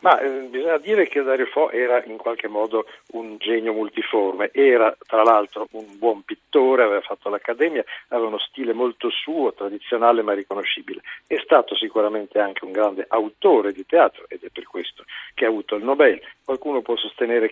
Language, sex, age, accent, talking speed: Italian, male, 50-69, native, 175 wpm